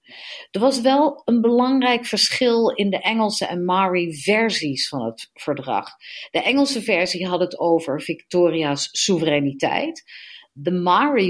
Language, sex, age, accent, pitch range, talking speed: Dutch, female, 40-59, Dutch, 170-235 Hz, 135 wpm